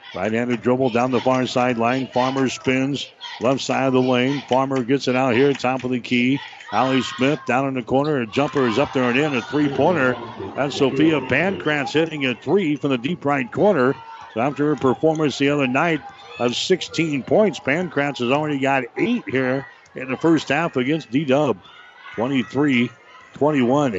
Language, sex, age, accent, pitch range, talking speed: English, male, 60-79, American, 125-140 Hz, 180 wpm